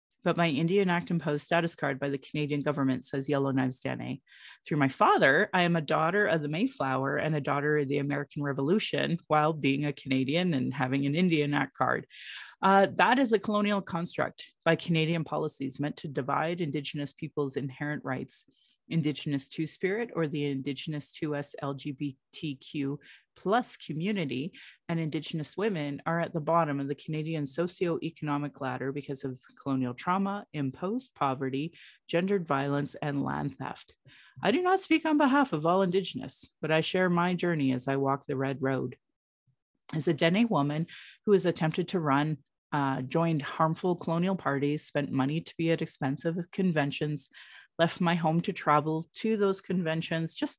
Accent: American